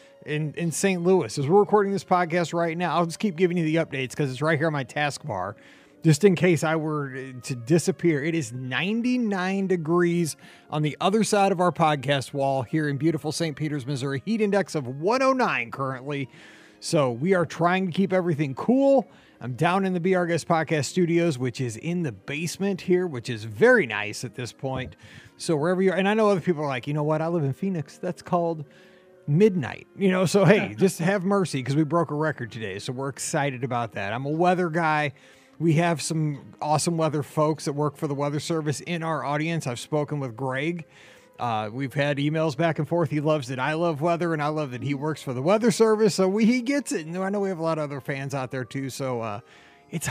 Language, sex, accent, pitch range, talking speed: English, male, American, 140-185 Hz, 230 wpm